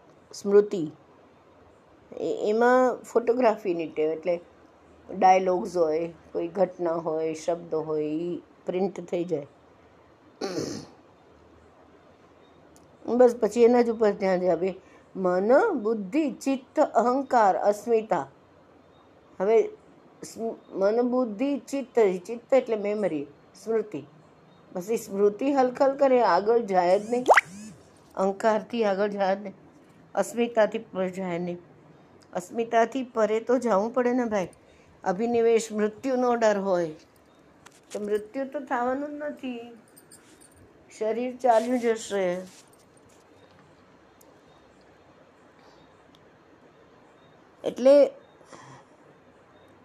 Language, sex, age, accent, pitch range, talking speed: Hindi, female, 50-69, native, 185-245 Hz, 50 wpm